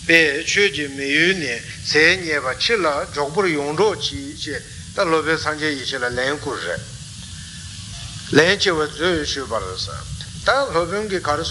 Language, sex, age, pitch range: Italian, male, 60-79, 125-160 Hz